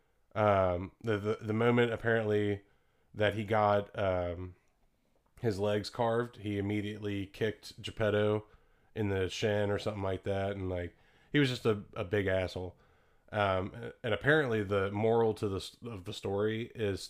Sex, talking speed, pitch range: male, 155 wpm, 100-115 Hz